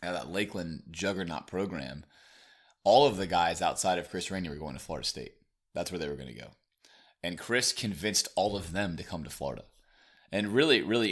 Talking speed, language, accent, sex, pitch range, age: 200 wpm, English, American, male, 75-90 Hz, 30-49